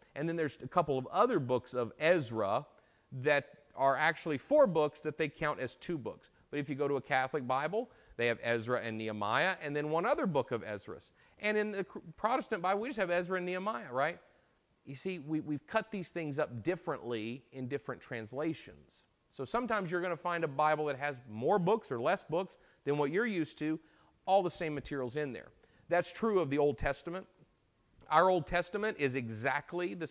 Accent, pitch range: American, 125-175 Hz